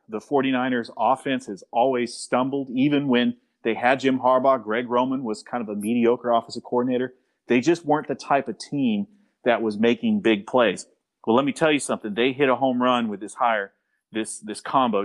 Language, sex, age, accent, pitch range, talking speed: English, male, 40-59, American, 115-140 Hz, 200 wpm